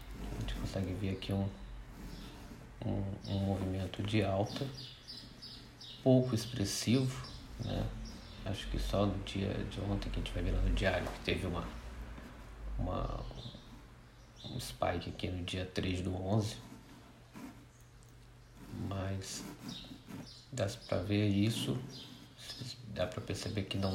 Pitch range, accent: 95-115 Hz, Brazilian